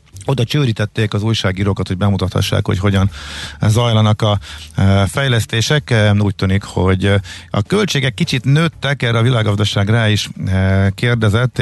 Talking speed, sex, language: 125 wpm, male, Hungarian